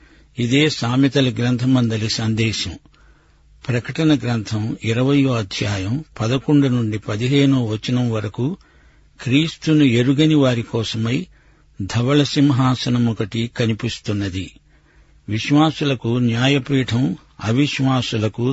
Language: Telugu